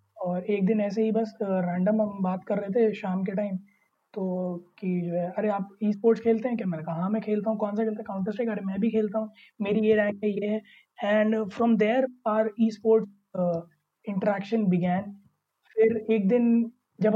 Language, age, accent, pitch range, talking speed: Hindi, 20-39, native, 195-225 Hz, 200 wpm